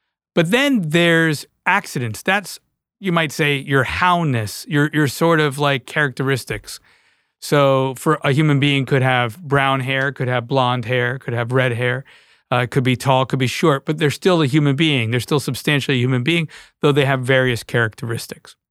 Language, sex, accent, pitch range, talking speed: English, male, American, 130-160 Hz, 185 wpm